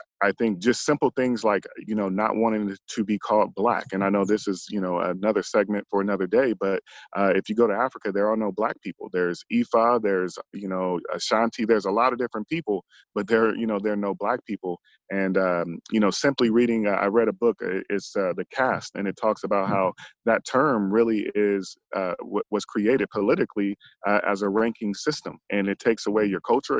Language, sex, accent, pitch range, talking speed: English, male, American, 100-115 Hz, 220 wpm